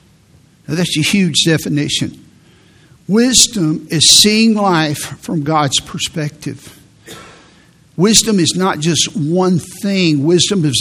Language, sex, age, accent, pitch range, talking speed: English, male, 60-79, American, 150-200 Hz, 110 wpm